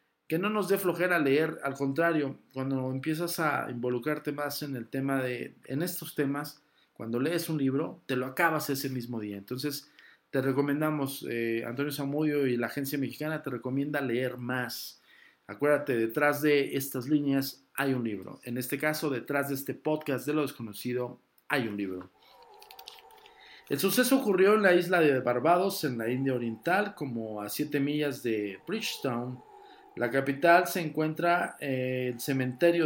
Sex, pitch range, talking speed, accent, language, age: male, 130-175 Hz, 165 wpm, Mexican, Spanish, 50-69